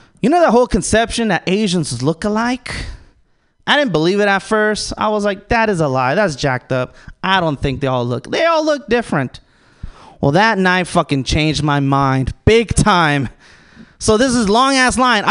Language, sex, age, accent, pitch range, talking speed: English, male, 20-39, American, 150-220 Hz, 195 wpm